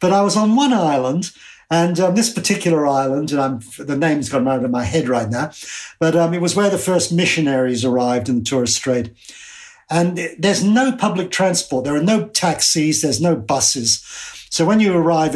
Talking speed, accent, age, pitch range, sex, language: 200 wpm, British, 50-69, 135-175 Hz, male, English